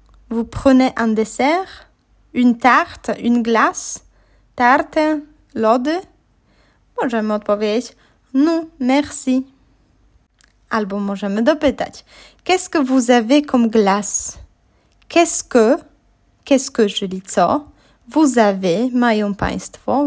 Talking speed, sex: 95 wpm, female